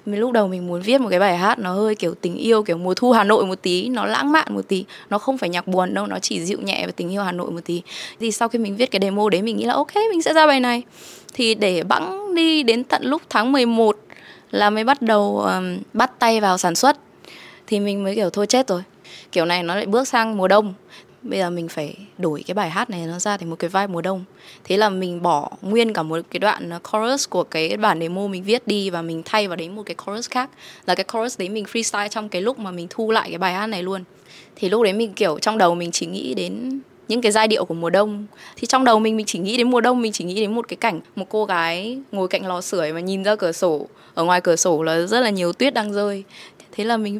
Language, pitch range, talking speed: Vietnamese, 180-230 Hz, 275 wpm